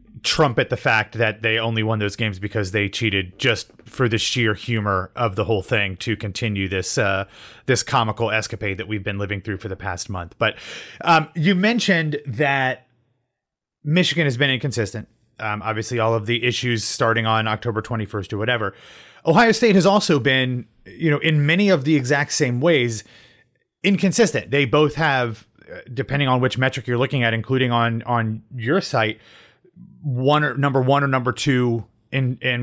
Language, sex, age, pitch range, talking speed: English, male, 30-49, 115-150 Hz, 180 wpm